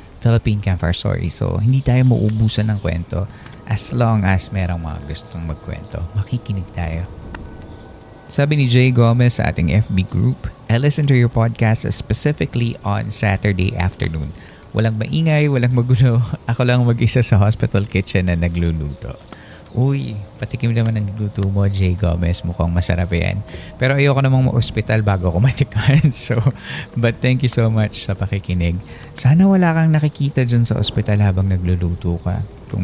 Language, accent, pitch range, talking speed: Filipino, native, 95-125 Hz, 150 wpm